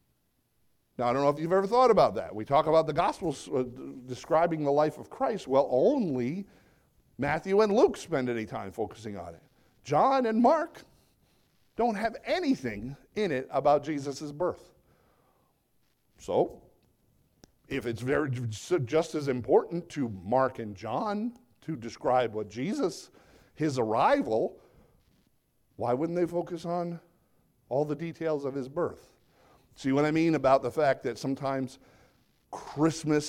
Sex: male